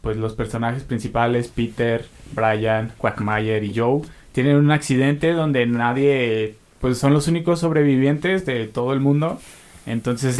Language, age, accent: Spanish, 20-39, Mexican